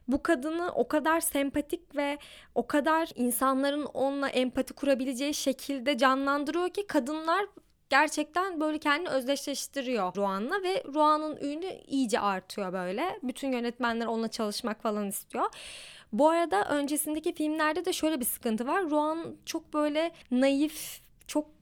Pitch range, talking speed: 240-300 Hz, 130 wpm